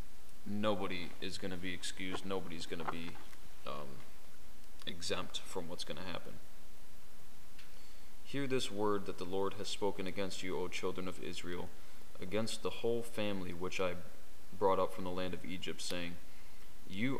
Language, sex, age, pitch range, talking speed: English, male, 20-39, 90-100 Hz, 160 wpm